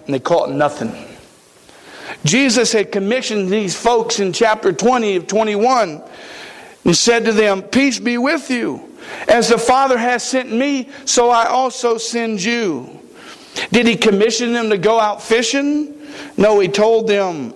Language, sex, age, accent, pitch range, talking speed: English, male, 50-69, American, 180-230 Hz, 155 wpm